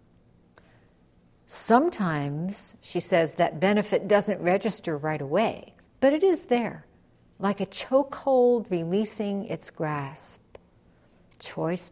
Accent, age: American, 60-79